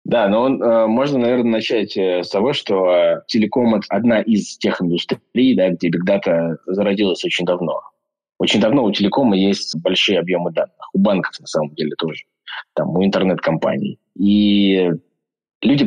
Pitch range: 85-100 Hz